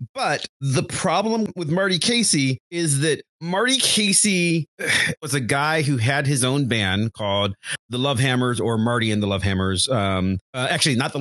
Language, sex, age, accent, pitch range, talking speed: English, male, 30-49, American, 120-155 Hz, 175 wpm